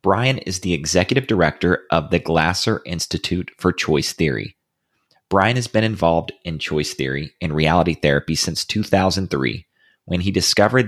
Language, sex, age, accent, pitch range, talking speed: English, male, 30-49, American, 80-105 Hz, 150 wpm